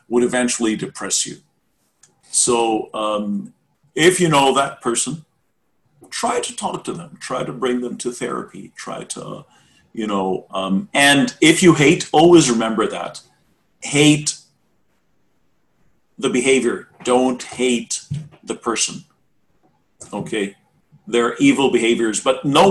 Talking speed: 125 wpm